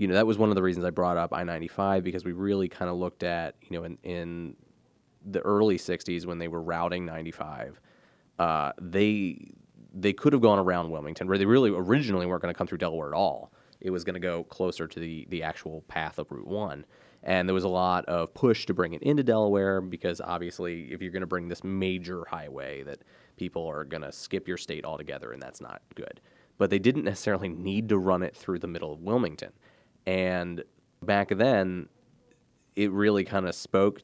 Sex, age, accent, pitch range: male, 20-39, American, 85-100 Hz